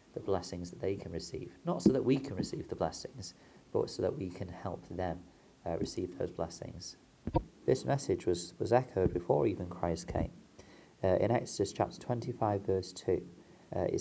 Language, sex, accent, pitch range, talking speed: English, male, British, 85-100 Hz, 180 wpm